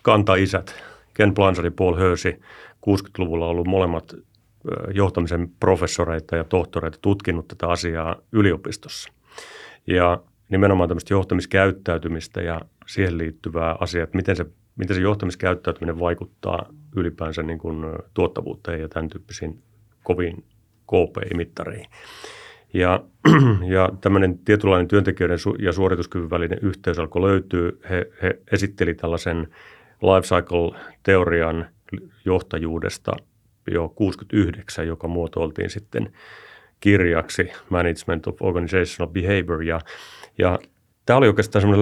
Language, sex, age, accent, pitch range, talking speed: Finnish, male, 40-59, native, 85-100 Hz, 105 wpm